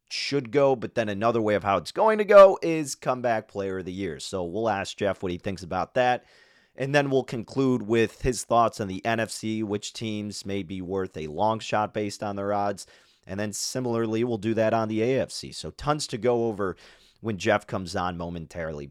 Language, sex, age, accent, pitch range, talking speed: English, male, 30-49, American, 100-125 Hz, 215 wpm